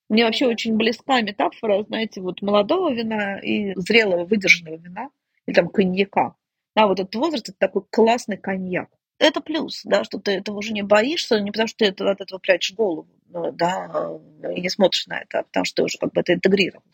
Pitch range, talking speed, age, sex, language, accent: 195-260 Hz, 200 wpm, 30-49, female, Russian, native